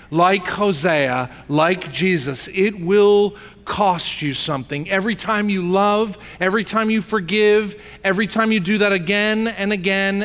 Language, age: English, 40-59